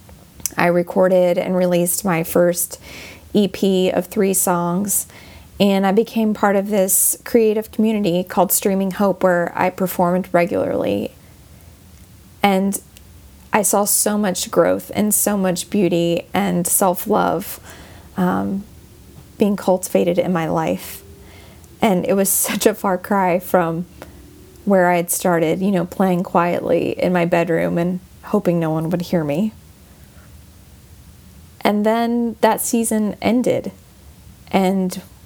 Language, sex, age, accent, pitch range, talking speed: English, female, 20-39, American, 170-195 Hz, 130 wpm